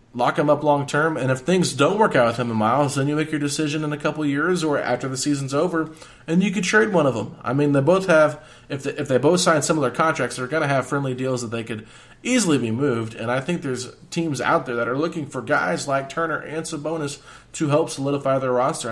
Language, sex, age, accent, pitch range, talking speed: English, male, 20-39, American, 120-155 Hz, 265 wpm